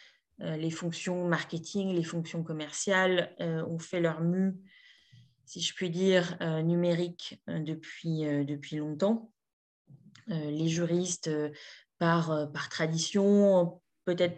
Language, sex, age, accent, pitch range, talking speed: French, female, 20-39, French, 160-190 Hz, 125 wpm